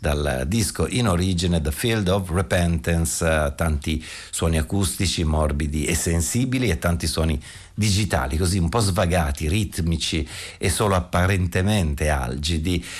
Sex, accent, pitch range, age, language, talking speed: male, native, 80-95 Hz, 50-69, Italian, 125 wpm